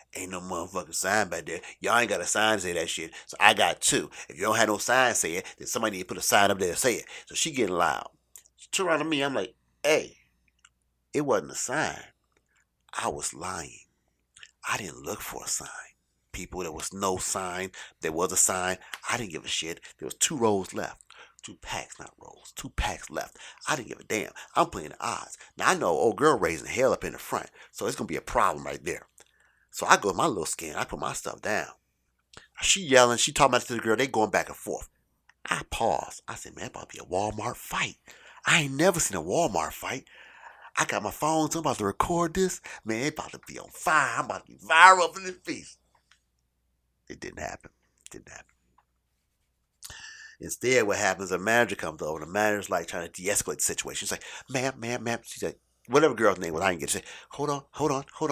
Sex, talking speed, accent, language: male, 240 wpm, American, English